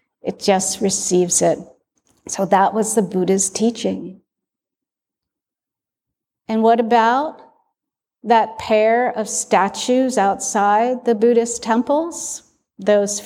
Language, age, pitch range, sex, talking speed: English, 50-69, 205-255 Hz, female, 100 wpm